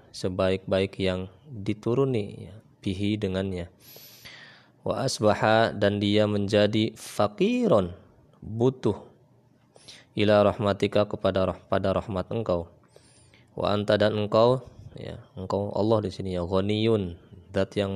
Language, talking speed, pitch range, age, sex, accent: Indonesian, 105 wpm, 95-115 Hz, 20-39, male, native